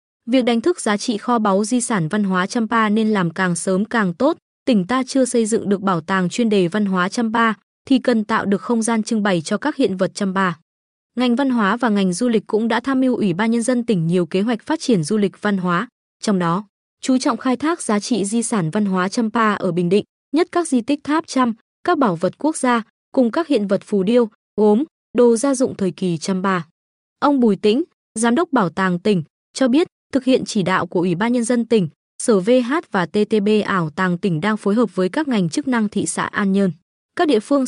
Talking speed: 240 wpm